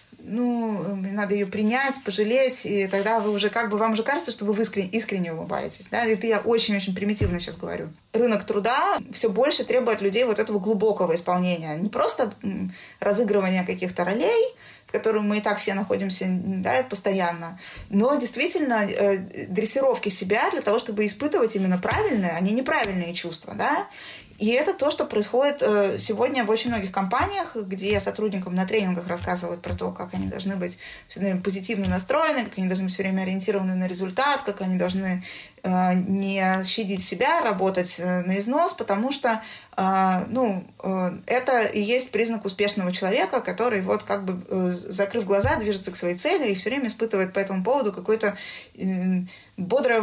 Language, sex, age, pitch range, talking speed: Russian, female, 20-39, 190-225 Hz, 165 wpm